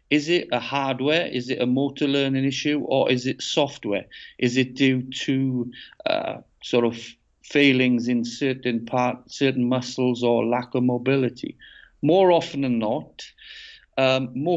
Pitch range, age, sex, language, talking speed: 110-130 Hz, 50-69, male, English, 150 wpm